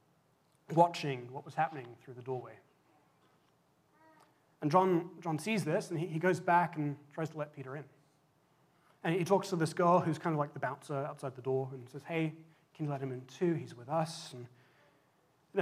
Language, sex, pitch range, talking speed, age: English, male, 145-185 Hz, 200 wpm, 30-49